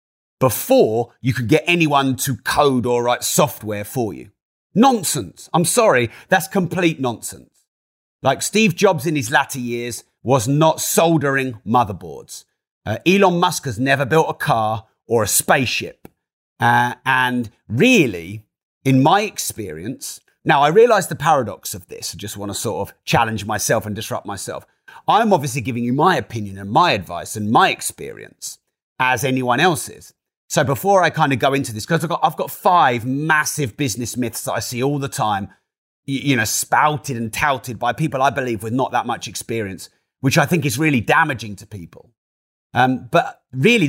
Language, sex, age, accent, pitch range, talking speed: English, male, 30-49, British, 110-150 Hz, 170 wpm